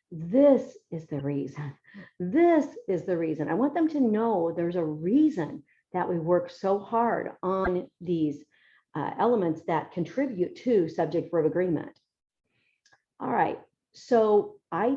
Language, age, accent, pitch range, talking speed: English, 50-69, American, 165-200 Hz, 140 wpm